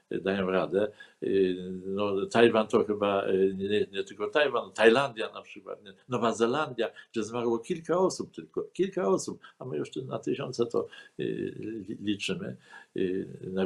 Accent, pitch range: native, 100-130 Hz